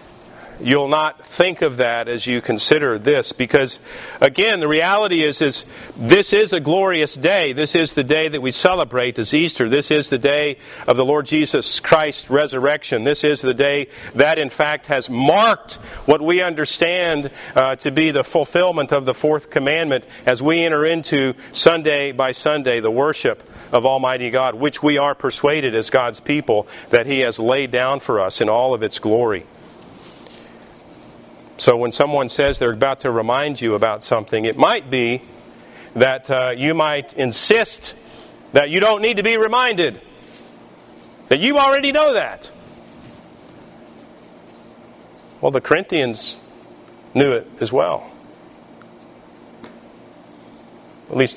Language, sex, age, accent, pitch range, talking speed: English, male, 50-69, American, 130-165 Hz, 155 wpm